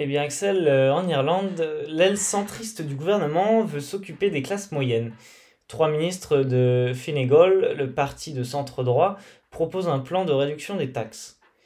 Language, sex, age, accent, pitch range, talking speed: French, male, 20-39, French, 130-175 Hz, 150 wpm